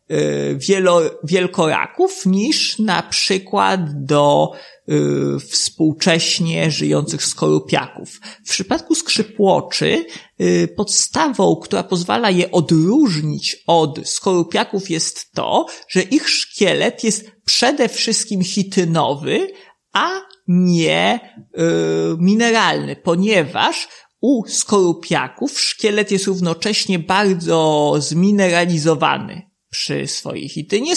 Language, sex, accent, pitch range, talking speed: Polish, male, native, 160-210 Hz, 80 wpm